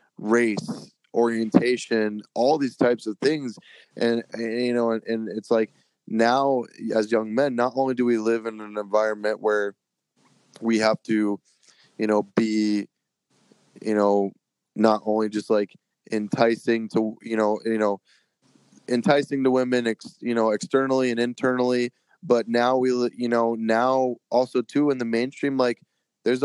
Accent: American